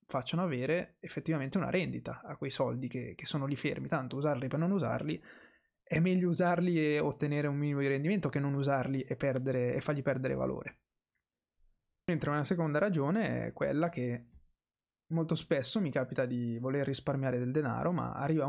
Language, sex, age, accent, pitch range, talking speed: Italian, male, 20-39, native, 130-165 Hz, 170 wpm